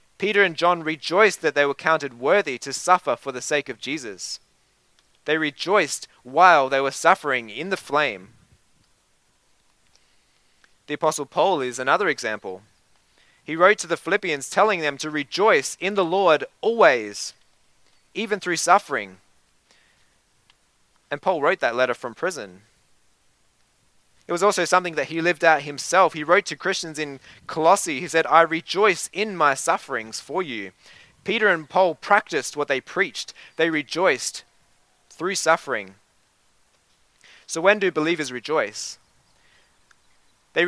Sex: male